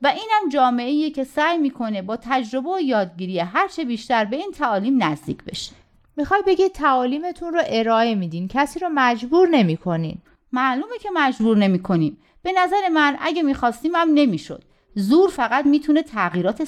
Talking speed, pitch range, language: 150 wpm, 205-305 Hz, Persian